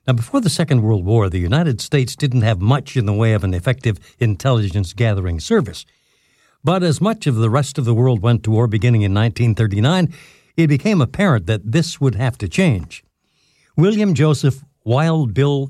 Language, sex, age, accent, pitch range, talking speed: English, male, 60-79, American, 105-145 Hz, 185 wpm